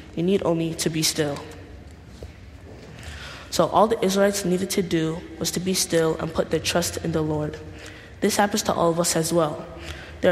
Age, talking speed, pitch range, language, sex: 10-29, 190 wpm, 155-180 Hz, English, female